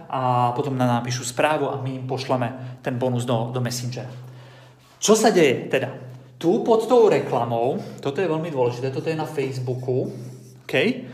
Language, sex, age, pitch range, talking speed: Slovak, male, 30-49, 130-170 Hz, 170 wpm